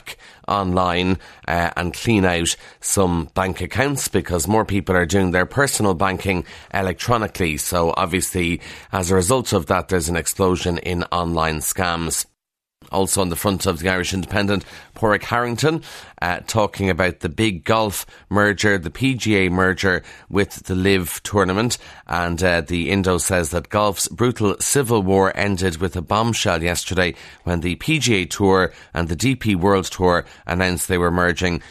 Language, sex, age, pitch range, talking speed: English, male, 30-49, 90-105 Hz, 155 wpm